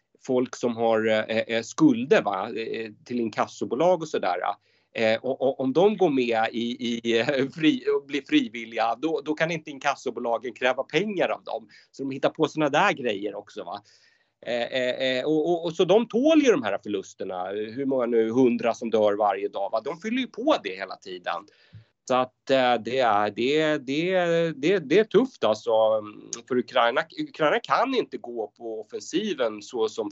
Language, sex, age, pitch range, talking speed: Swedish, male, 30-49, 110-160 Hz, 170 wpm